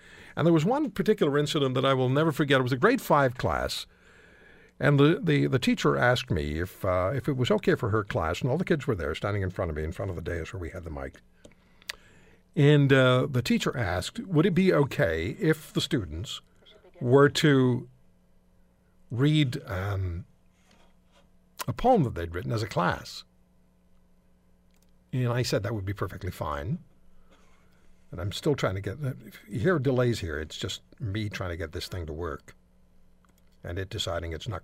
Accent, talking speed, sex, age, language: American, 195 wpm, male, 60-79, English